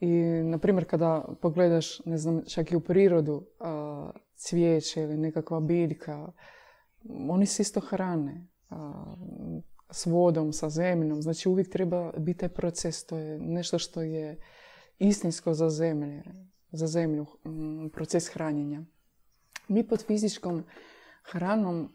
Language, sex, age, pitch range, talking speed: Croatian, female, 20-39, 155-180 Hz, 125 wpm